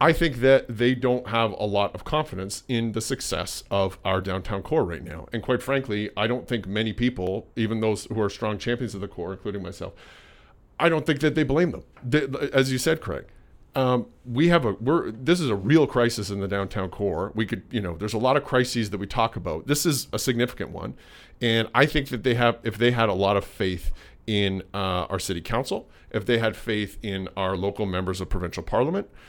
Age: 40-59